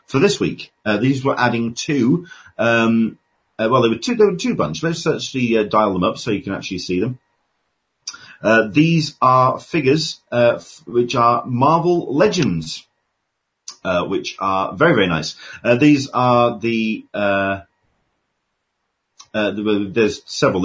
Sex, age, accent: male, 40-59, British